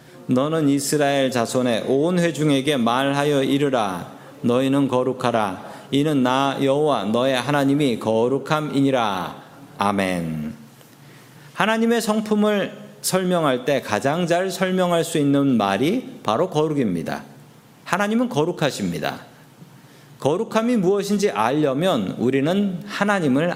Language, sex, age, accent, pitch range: Korean, male, 40-59, native, 135-200 Hz